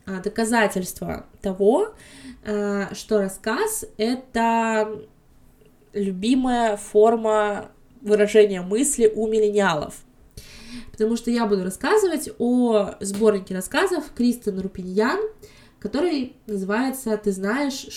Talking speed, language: 85 wpm, Russian